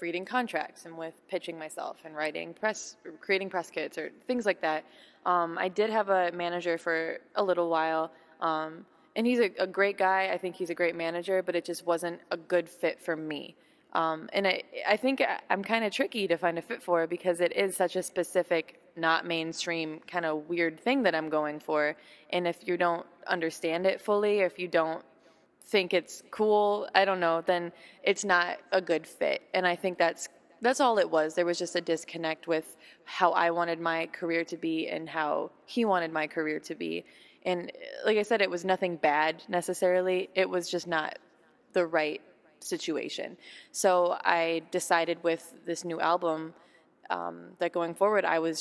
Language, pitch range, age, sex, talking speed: English, 165-185 Hz, 20-39, female, 195 wpm